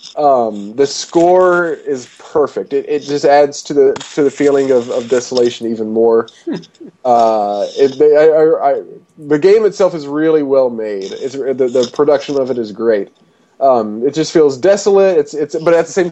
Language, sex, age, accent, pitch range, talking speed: English, male, 20-39, American, 140-200 Hz, 185 wpm